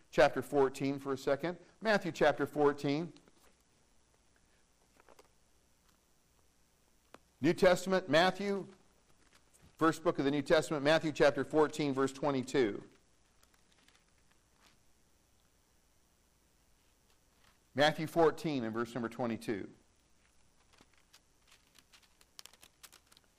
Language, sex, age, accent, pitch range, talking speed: English, male, 50-69, American, 125-170 Hz, 70 wpm